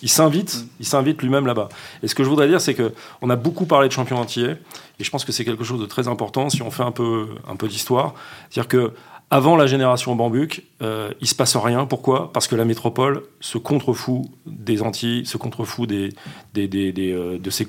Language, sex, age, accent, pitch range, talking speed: French, male, 40-59, French, 115-150 Hz, 225 wpm